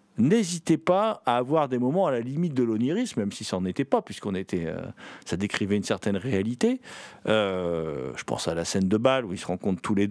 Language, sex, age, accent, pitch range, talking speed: French, male, 50-69, French, 115-175 Hz, 230 wpm